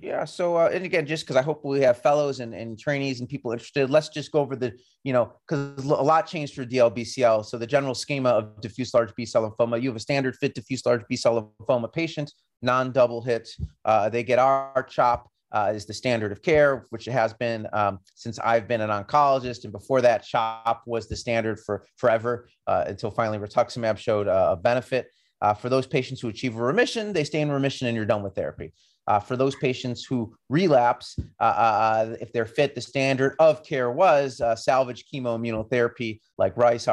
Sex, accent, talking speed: male, American, 210 wpm